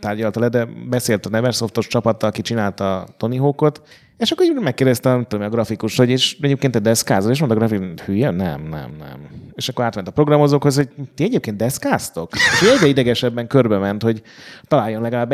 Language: Hungarian